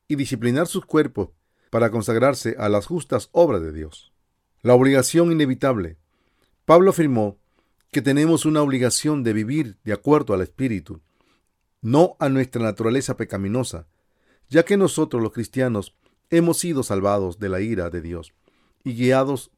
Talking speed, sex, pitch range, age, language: 145 wpm, male, 100-140 Hz, 40-59, English